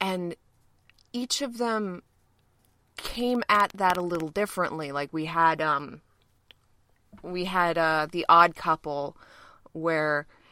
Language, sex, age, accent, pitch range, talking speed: English, female, 20-39, American, 150-190 Hz, 120 wpm